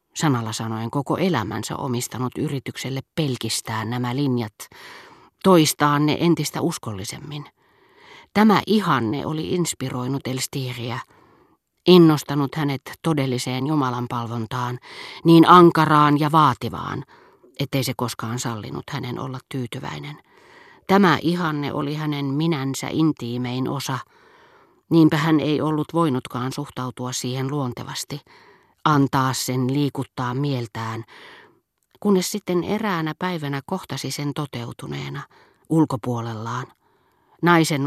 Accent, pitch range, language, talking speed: native, 125-160 Hz, Finnish, 100 wpm